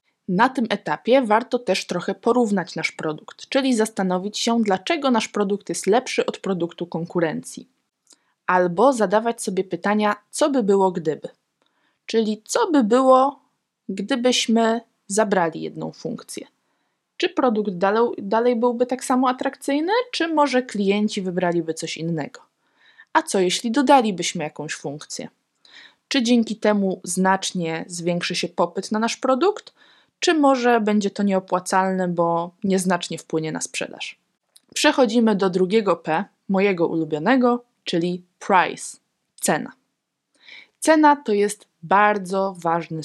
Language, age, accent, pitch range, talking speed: Polish, 20-39, native, 180-245 Hz, 125 wpm